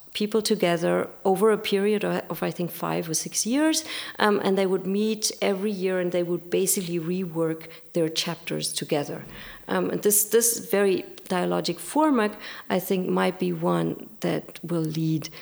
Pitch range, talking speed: 170-215 Hz, 165 wpm